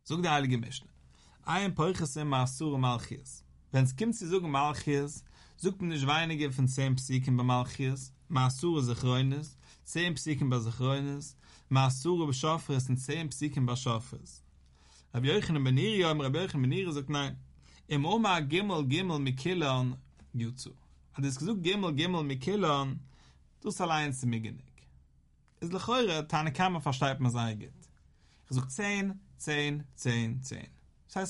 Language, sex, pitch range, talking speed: English, male, 120-160 Hz, 60 wpm